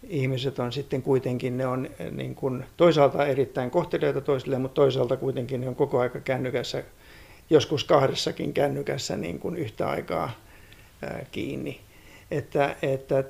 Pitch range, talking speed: 125-150 Hz, 135 wpm